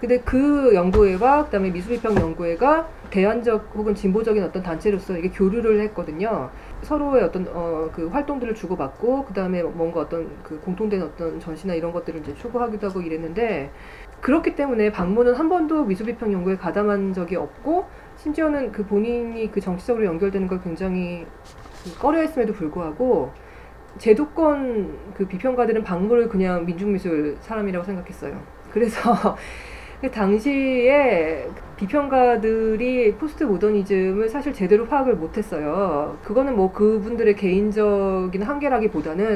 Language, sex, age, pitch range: Korean, female, 30-49, 190-255 Hz